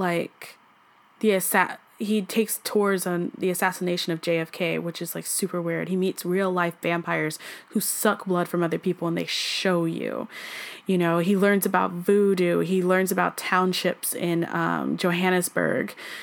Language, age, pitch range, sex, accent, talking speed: English, 10-29, 175-205 Hz, female, American, 155 wpm